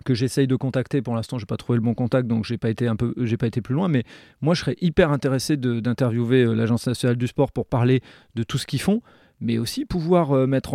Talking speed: 240 wpm